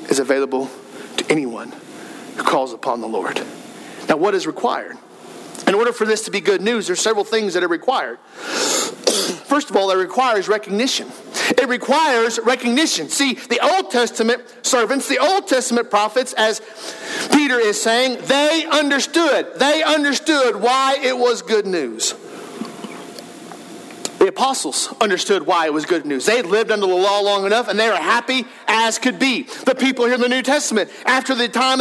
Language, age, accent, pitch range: English, 50-69, American, 210-280 Hz